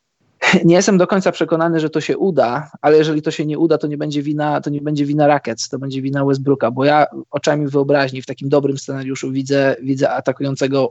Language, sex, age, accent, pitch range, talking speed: Polish, male, 20-39, native, 140-155 Hz, 215 wpm